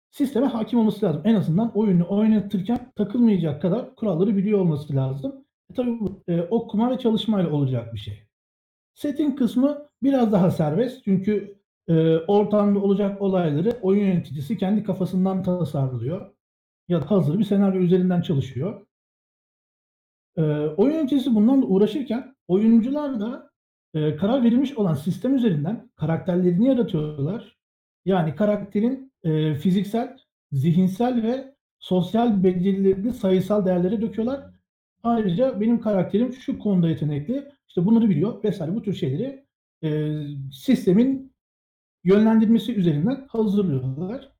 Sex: male